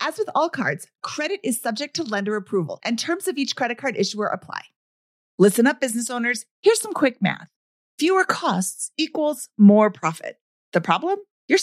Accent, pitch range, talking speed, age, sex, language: American, 200-290 Hz, 175 wpm, 30-49, female, English